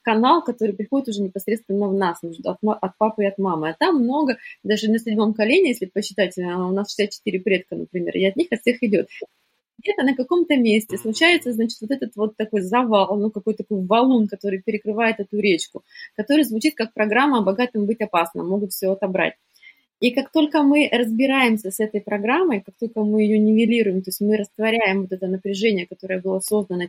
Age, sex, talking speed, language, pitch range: 20-39, female, 185 wpm, Russian, 190-230 Hz